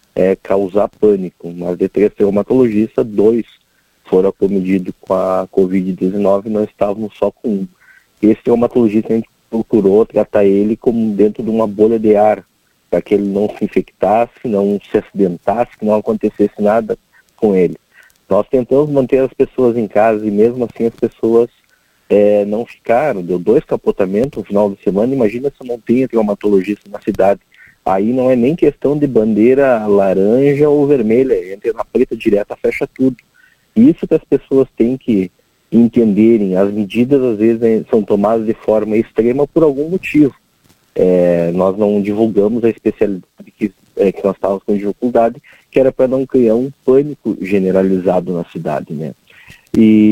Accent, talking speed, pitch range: Brazilian, 165 wpm, 100-125 Hz